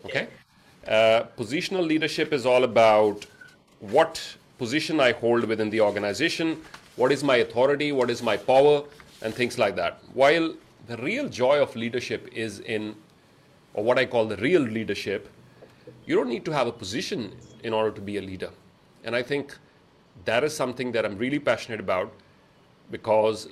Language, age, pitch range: English, 30-49, 110-140 Hz